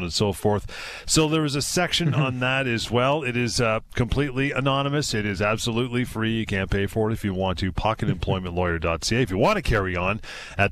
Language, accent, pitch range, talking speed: English, American, 95-125 Hz, 215 wpm